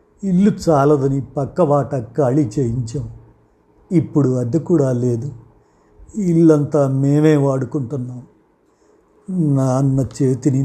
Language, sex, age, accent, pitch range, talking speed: Telugu, male, 60-79, native, 130-155 Hz, 90 wpm